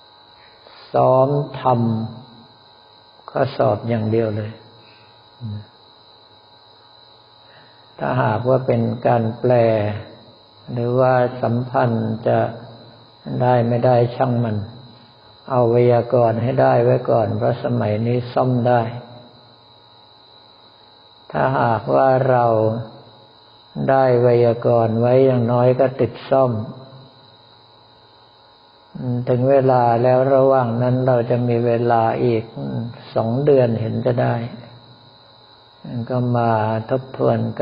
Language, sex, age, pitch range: Thai, male, 60-79, 105-125 Hz